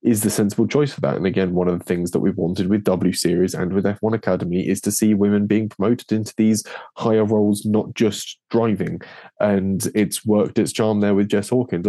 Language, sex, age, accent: English, male, 20-39, British